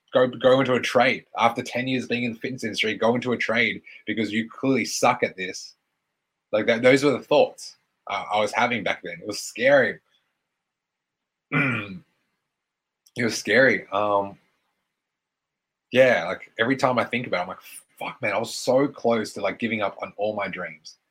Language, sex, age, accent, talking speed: English, male, 20-39, Australian, 190 wpm